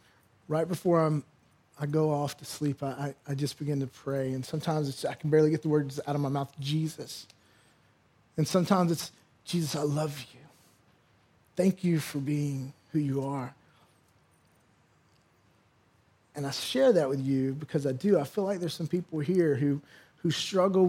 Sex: male